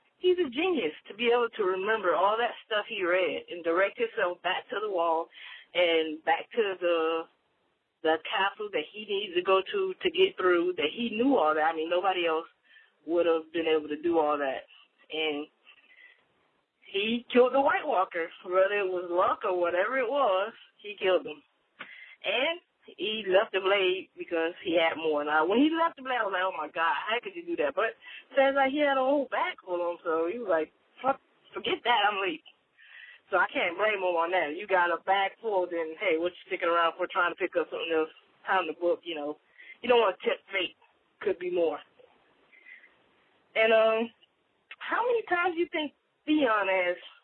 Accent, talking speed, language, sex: American, 210 wpm, English, female